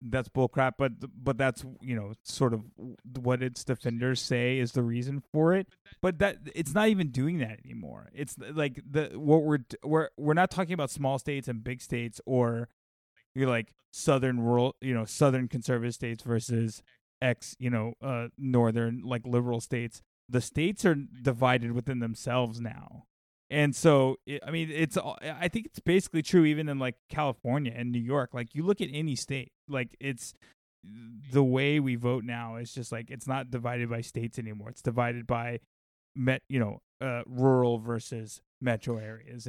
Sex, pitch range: male, 115-135 Hz